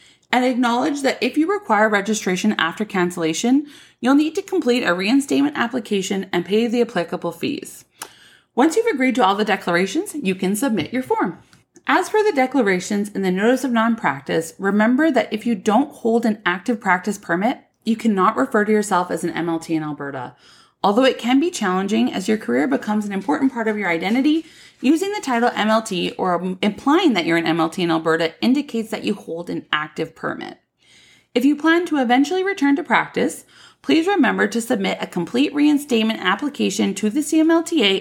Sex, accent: female, American